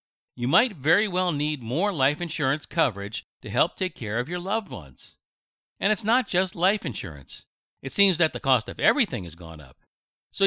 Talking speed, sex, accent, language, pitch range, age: 195 wpm, male, American, English, 120-190 Hz, 60-79